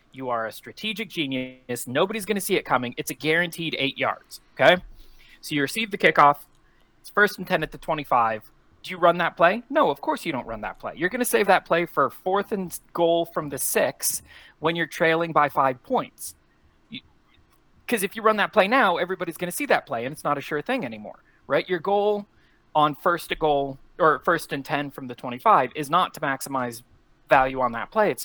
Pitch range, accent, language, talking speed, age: 125-175 Hz, American, English, 215 wpm, 30-49